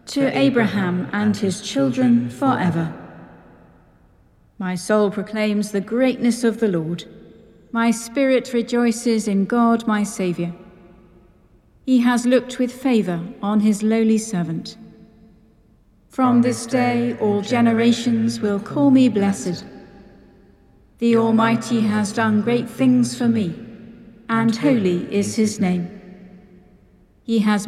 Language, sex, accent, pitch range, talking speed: English, female, British, 190-230 Hz, 115 wpm